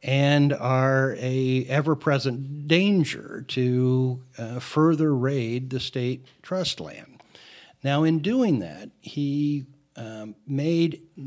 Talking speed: 105 wpm